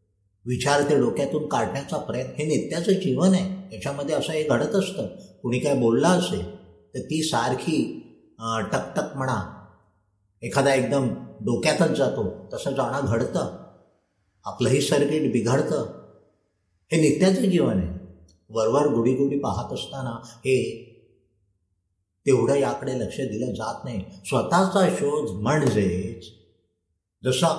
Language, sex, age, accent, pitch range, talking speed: Marathi, male, 50-69, native, 90-140 Hz, 85 wpm